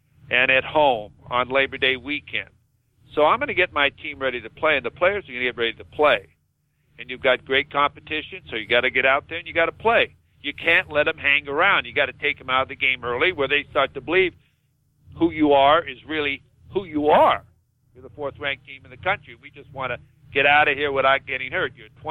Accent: American